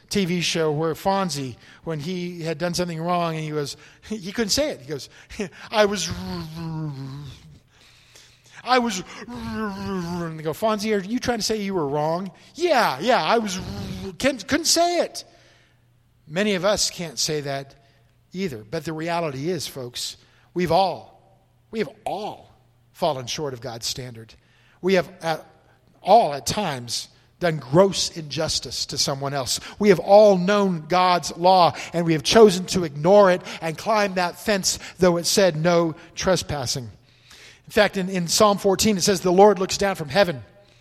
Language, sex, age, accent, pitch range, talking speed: English, male, 50-69, American, 155-220 Hz, 165 wpm